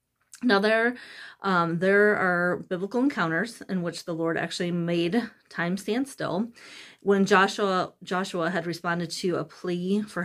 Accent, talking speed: American, 145 wpm